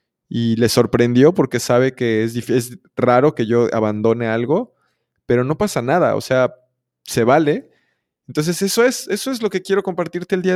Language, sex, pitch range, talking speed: Spanish, male, 115-145 Hz, 190 wpm